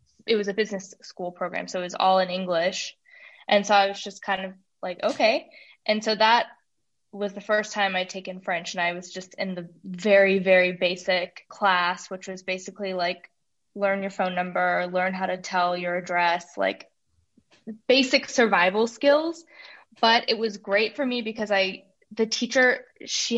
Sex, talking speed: female, 180 wpm